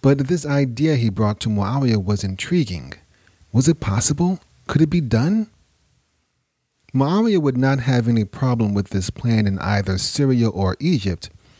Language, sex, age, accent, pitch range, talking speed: English, male, 30-49, American, 100-135 Hz, 155 wpm